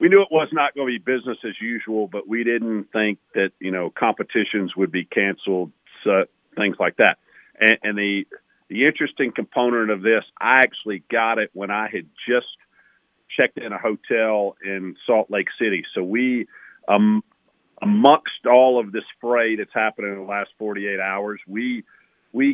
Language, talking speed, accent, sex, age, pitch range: English, 180 wpm, American, male, 50-69, 105-120 Hz